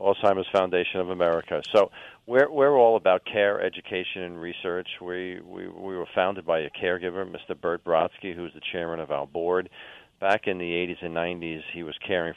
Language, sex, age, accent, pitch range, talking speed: English, male, 40-59, American, 85-100 Hz, 190 wpm